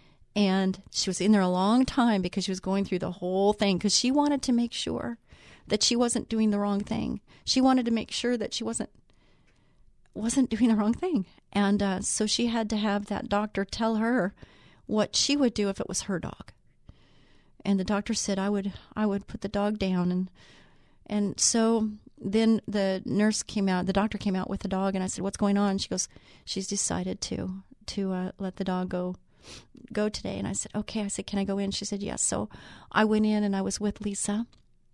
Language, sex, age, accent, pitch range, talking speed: English, female, 40-59, American, 195-230 Hz, 225 wpm